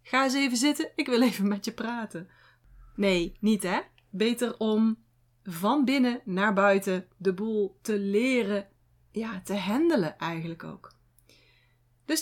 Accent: Dutch